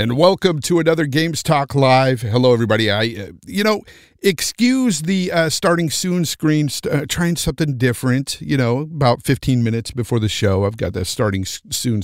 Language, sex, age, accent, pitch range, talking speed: English, male, 50-69, American, 110-160 Hz, 175 wpm